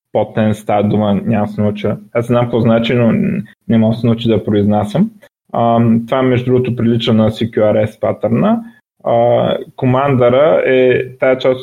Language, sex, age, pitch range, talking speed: Bulgarian, male, 20-39, 115-145 Hz, 105 wpm